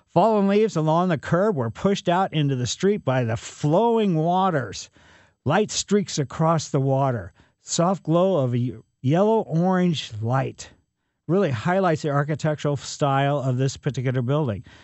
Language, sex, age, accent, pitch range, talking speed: English, male, 50-69, American, 130-180 Hz, 140 wpm